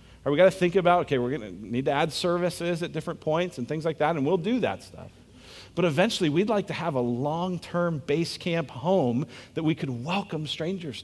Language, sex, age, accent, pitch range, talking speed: English, male, 40-59, American, 105-170 Hz, 230 wpm